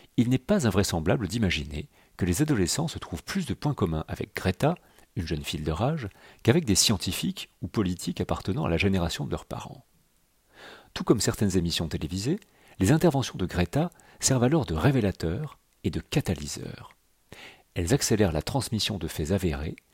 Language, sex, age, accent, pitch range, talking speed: French, male, 40-59, French, 85-120 Hz, 170 wpm